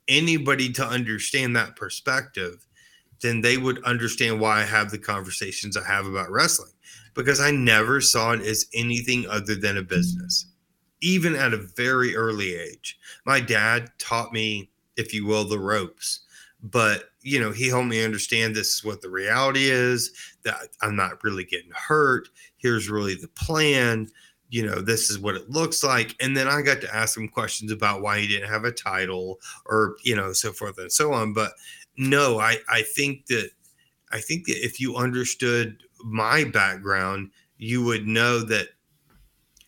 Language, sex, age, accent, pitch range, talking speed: English, male, 30-49, American, 110-130 Hz, 175 wpm